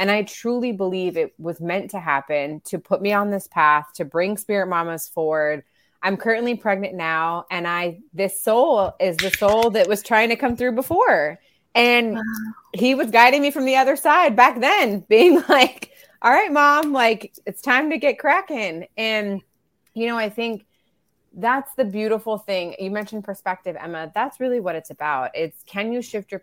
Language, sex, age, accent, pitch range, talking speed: English, female, 20-39, American, 185-235 Hz, 190 wpm